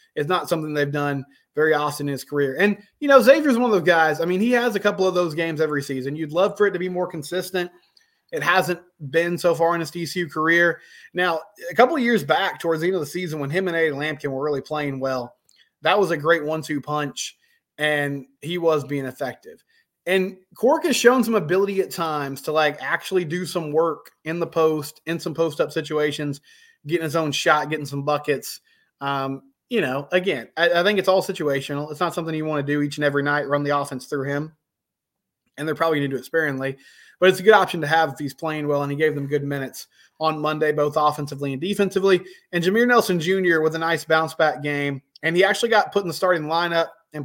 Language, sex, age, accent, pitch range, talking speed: English, male, 20-39, American, 150-185 Hz, 230 wpm